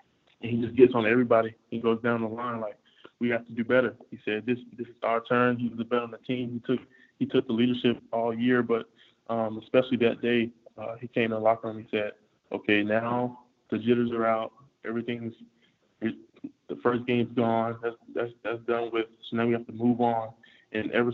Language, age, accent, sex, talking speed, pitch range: English, 20-39, American, male, 225 wpm, 110-120 Hz